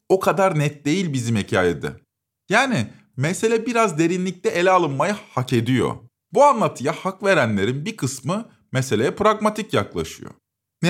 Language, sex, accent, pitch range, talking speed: Turkish, male, native, 135-205 Hz, 130 wpm